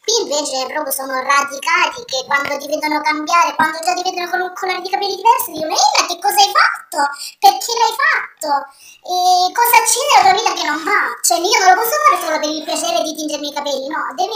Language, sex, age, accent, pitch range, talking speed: Italian, male, 20-39, native, 305-400 Hz, 225 wpm